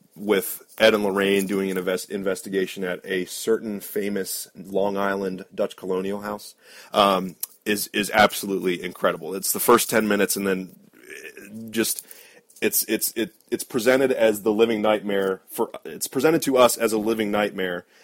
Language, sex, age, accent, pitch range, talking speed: English, male, 30-49, American, 100-125 Hz, 160 wpm